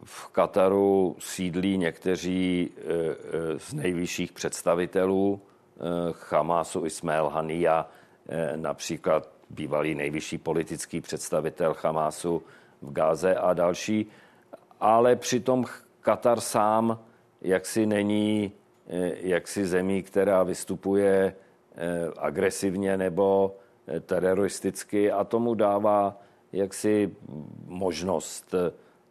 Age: 50-69